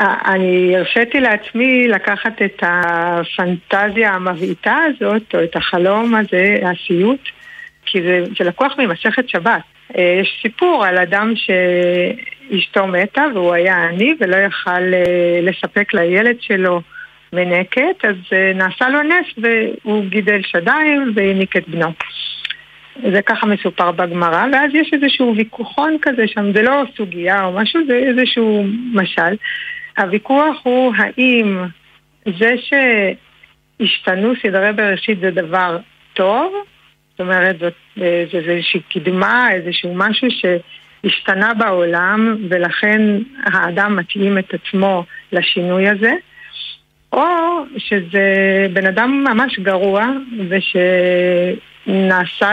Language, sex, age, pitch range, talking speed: Hebrew, female, 60-79, 180-235 Hz, 110 wpm